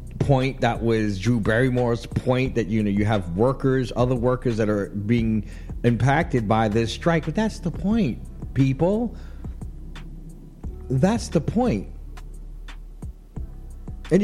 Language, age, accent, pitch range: English, 50-69, American, 105-140 Hz